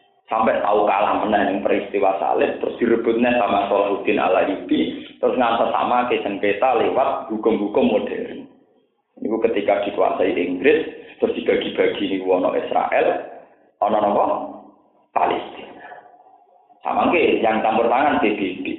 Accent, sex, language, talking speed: native, male, Indonesian, 120 wpm